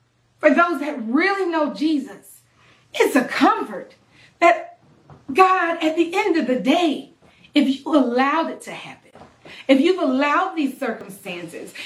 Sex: female